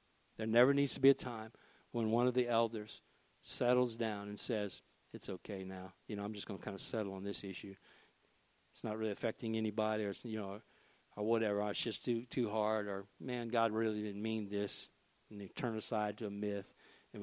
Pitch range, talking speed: 105-135 Hz, 215 wpm